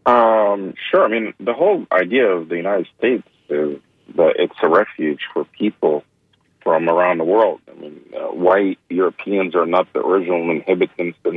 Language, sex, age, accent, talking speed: English, male, 40-59, American, 175 wpm